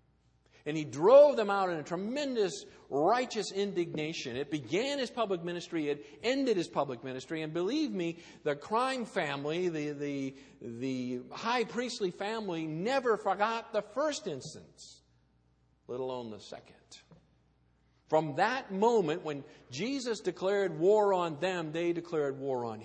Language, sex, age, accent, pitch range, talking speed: English, male, 50-69, American, 135-195 Hz, 140 wpm